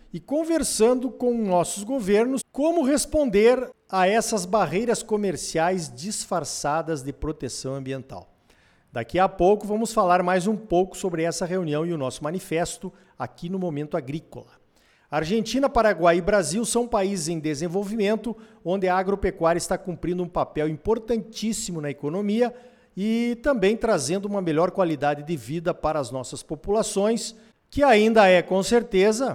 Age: 50-69